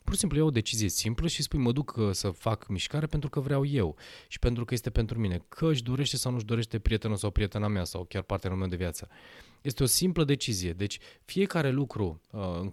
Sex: male